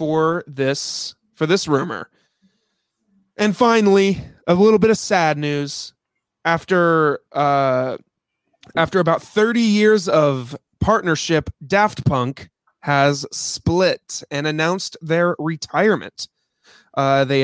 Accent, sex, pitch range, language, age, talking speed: American, male, 140-175 Hz, English, 20-39, 105 wpm